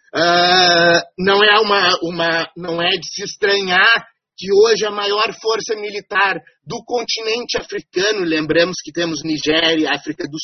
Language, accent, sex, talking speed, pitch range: Portuguese, Brazilian, male, 125 wpm, 180-245 Hz